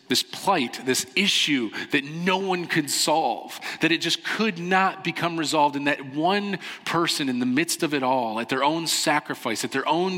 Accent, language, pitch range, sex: American, English, 110-170 Hz, male